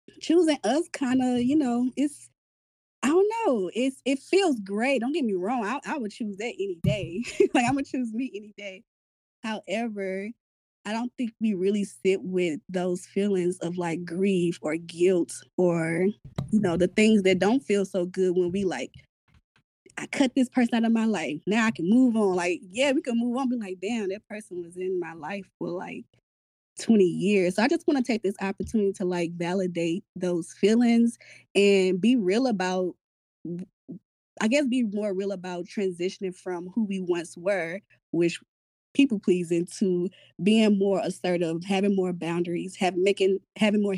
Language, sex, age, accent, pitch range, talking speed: English, female, 20-39, American, 175-225 Hz, 185 wpm